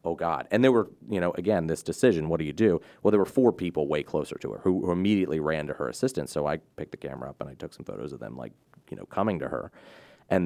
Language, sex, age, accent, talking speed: English, male, 30-49, American, 285 wpm